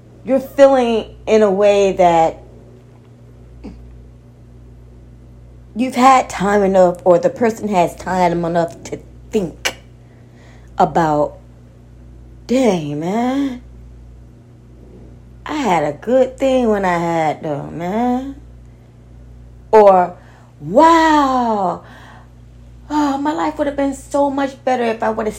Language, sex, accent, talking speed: English, female, American, 110 wpm